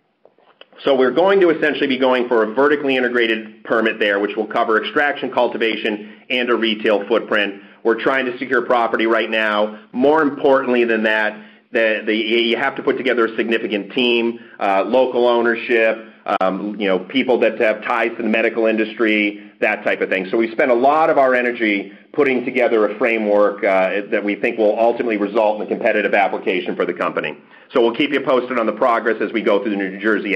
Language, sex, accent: English, male, American